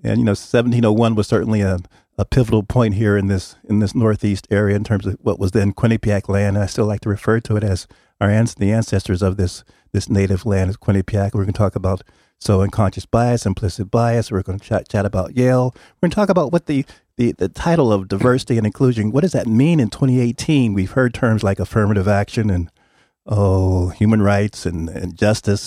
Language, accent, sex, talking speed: English, American, male, 220 wpm